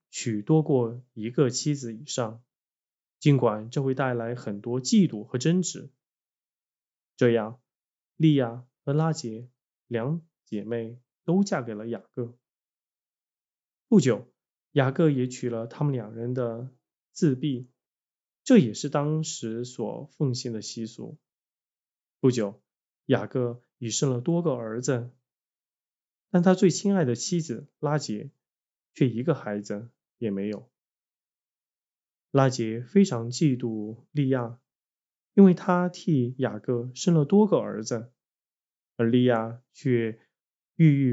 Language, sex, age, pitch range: Chinese, male, 20-39, 115-145 Hz